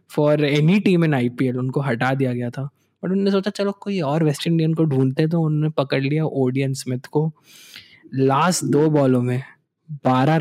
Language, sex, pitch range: Hindi, male, 135-160 Hz